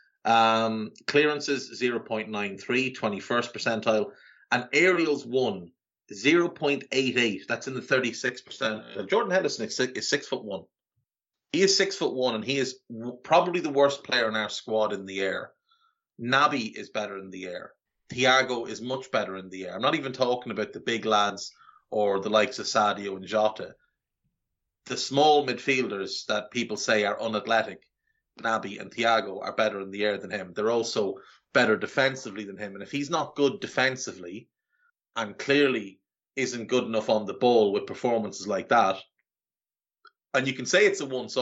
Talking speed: 170 wpm